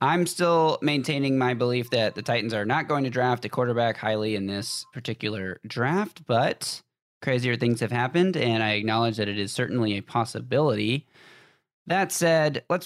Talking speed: 175 wpm